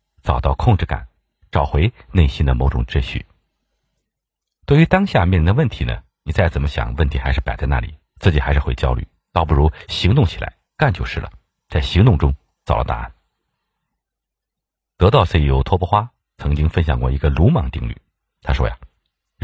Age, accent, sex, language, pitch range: 50-69, native, male, Chinese, 70-95 Hz